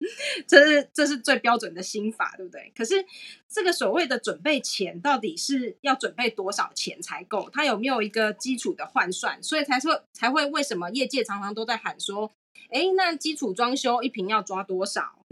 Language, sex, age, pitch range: Chinese, female, 20-39, 205-280 Hz